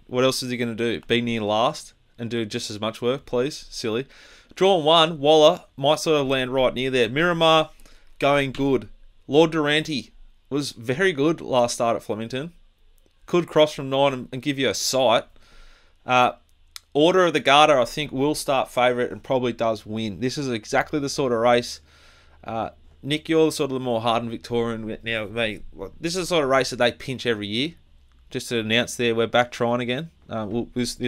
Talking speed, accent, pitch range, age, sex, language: 200 wpm, Australian, 115-145 Hz, 20-39, male, English